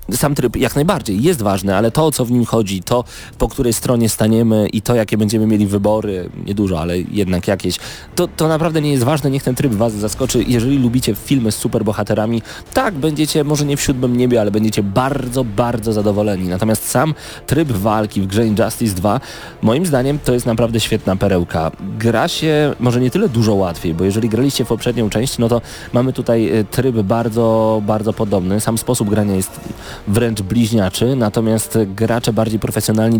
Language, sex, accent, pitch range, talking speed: Polish, male, native, 105-125 Hz, 185 wpm